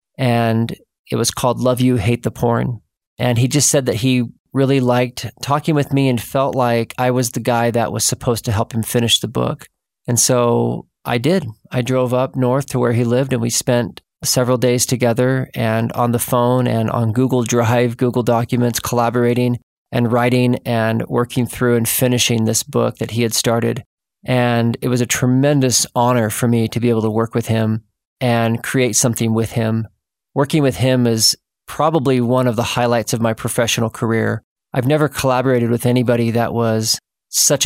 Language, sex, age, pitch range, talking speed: English, male, 40-59, 115-130 Hz, 190 wpm